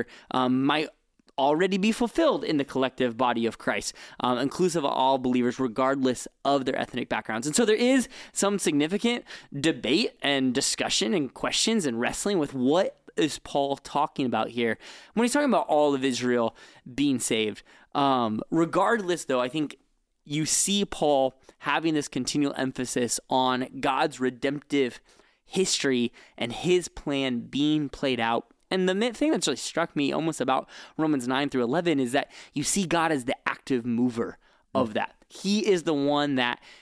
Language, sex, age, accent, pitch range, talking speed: English, male, 20-39, American, 125-170 Hz, 165 wpm